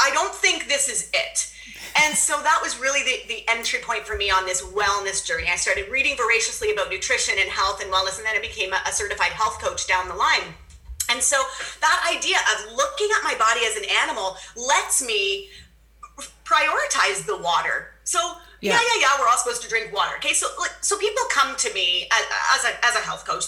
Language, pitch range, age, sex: English, 210-305 Hz, 30-49, female